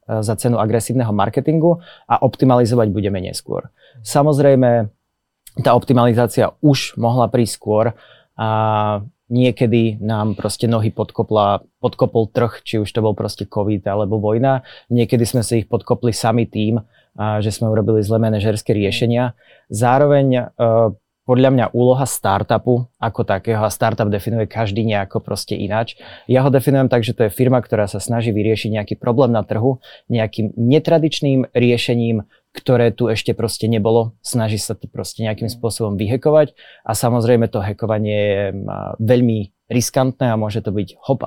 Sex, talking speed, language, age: male, 145 wpm, Slovak, 20-39